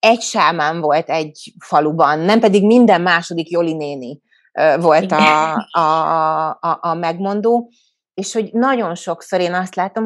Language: Hungarian